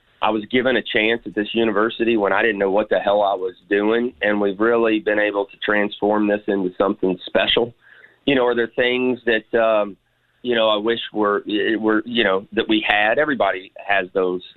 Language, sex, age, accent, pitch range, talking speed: English, male, 30-49, American, 105-130 Hz, 205 wpm